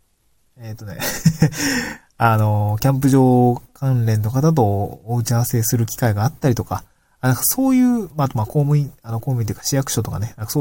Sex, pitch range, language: male, 110-150 Hz, Japanese